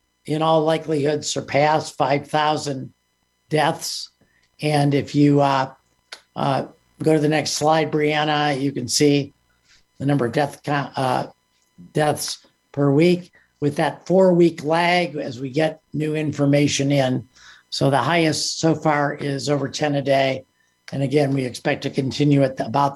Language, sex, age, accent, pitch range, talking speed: English, male, 50-69, American, 135-165 Hz, 155 wpm